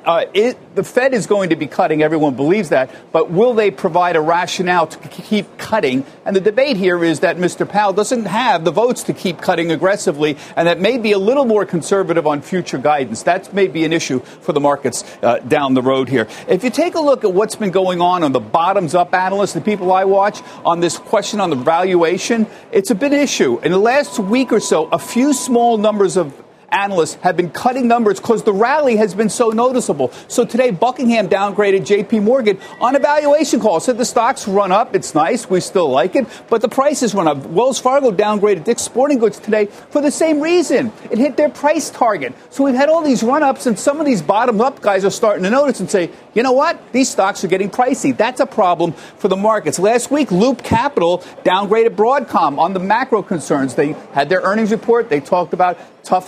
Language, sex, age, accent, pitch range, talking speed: English, male, 50-69, American, 180-245 Hz, 220 wpm